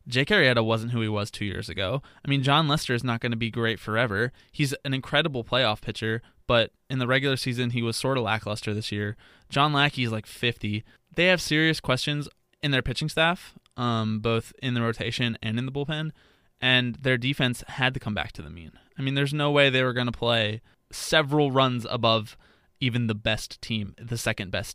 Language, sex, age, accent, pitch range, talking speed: English, male, 20-39, American, 115-140 Hz, 215 wpm